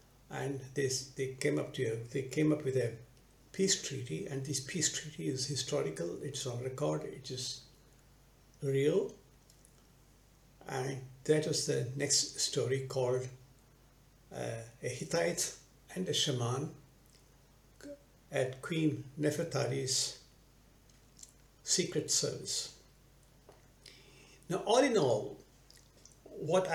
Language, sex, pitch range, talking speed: English, male, 130-155 Hz, 110 wpm